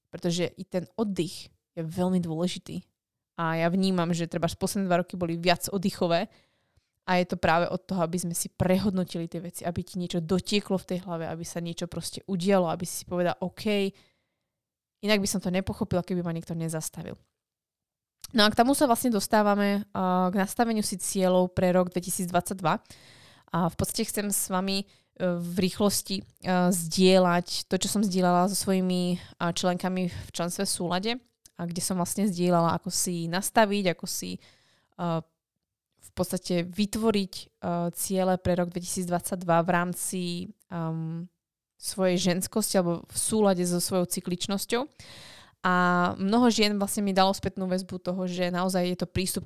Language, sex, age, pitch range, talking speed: Slovak, female, 20-39, 175-195 Hz, 165 wpm